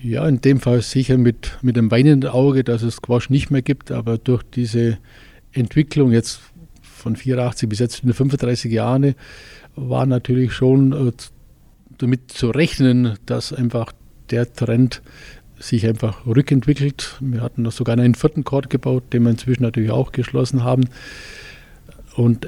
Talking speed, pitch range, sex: 150 wpm, 115-130 Hz, male